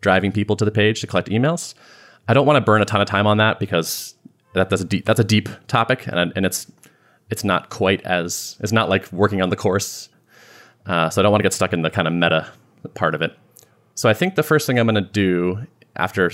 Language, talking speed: English, 240 wpm